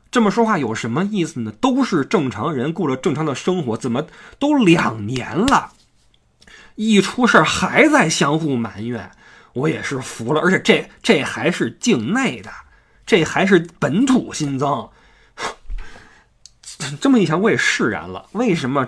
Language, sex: Chinese, male